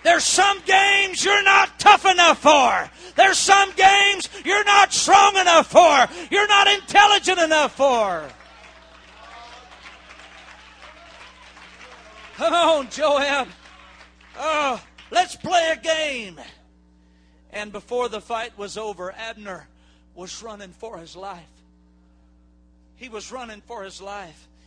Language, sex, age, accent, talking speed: English, male, 40-59, American, 110 wpm